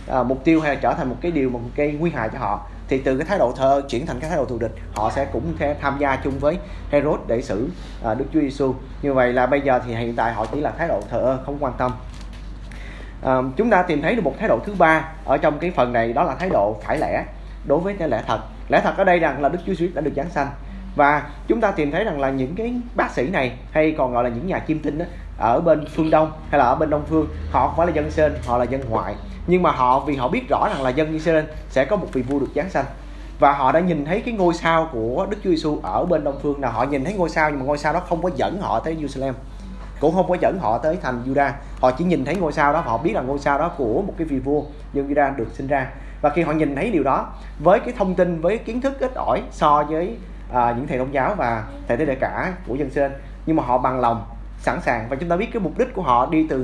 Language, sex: Vietnamese, male